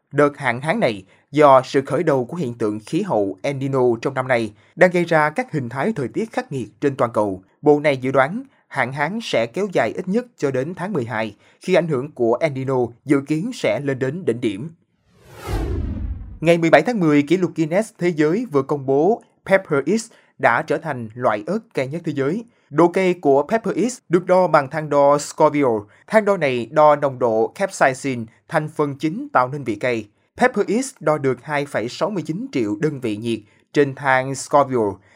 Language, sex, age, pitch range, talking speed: Vietnamese, male, 20-39, 130-165 Hz, 200 wpm